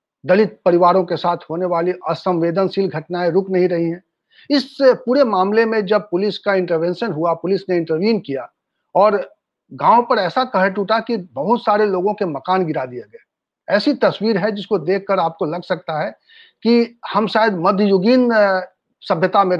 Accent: native